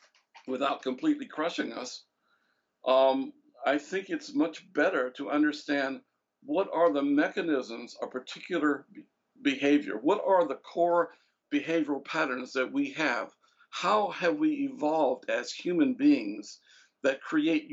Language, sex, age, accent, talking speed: English, male, 60-79, American, 125 wpm